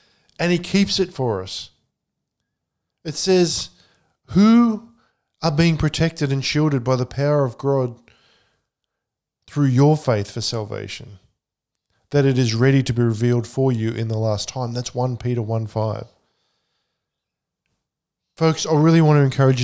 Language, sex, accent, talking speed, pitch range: English, male, Australian, 145 wpm, 115-150 Hz